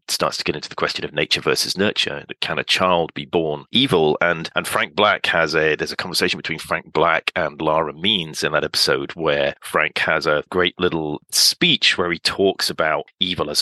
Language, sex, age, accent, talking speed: English, male, 40-59, British, 205 wpm